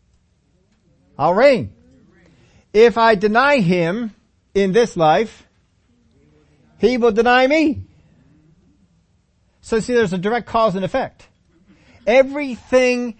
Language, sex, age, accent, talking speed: English, male, 40-59, American, 100 wpm